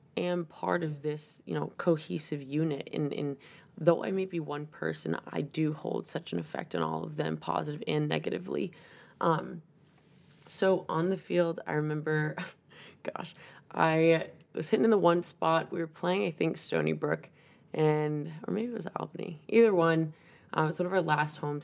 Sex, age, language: female, 20-39, English